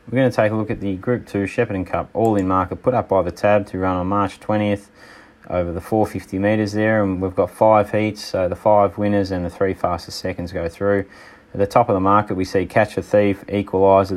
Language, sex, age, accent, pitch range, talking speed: English, male, 30-49, Australian, 90-100 Hz, 240 wpm